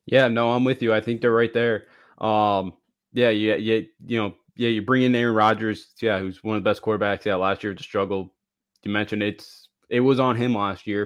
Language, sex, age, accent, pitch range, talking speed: English, male, 20-39, American, 105-120 Hz, 235 wpm